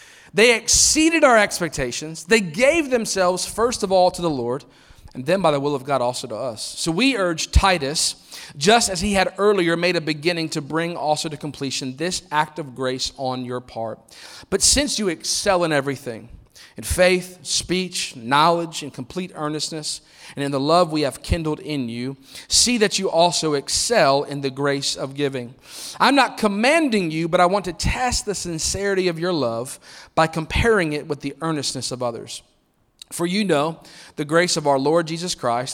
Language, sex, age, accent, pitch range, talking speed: English, male, 40-59, American, 135-180 Hz, 185 wpm